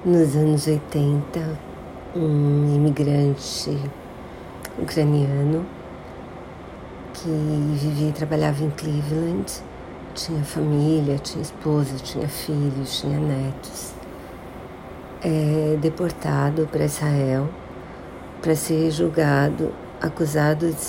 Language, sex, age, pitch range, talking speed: Portuguese, female, 50-69, 145-160 Hz, 85 wpm